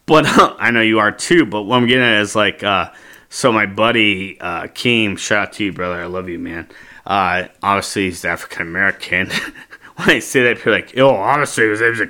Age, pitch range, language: 30-49, 100-125 Hz, English